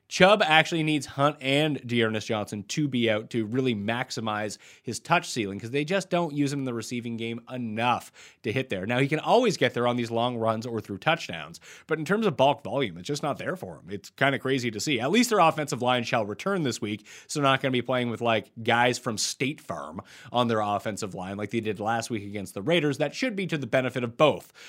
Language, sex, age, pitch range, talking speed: English, male, 30-49, 115-150 Hz, 250 wpm